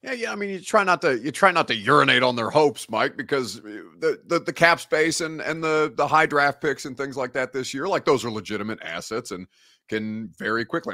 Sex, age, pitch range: male, 30-49, 105-140 Hz